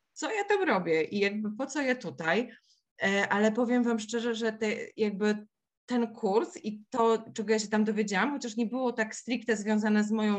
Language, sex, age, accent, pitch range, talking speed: Polish, female, 20-39, native, 210-255 Hz, 190 wpm